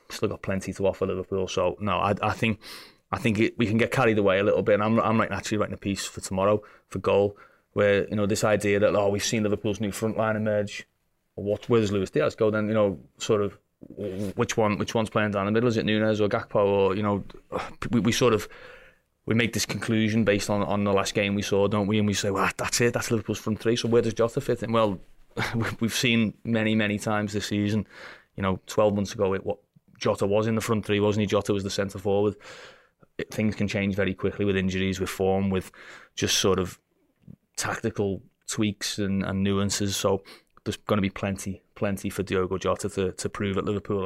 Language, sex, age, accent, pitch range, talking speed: English, male, 20-39, British, 100-110 Hz, 235 wpm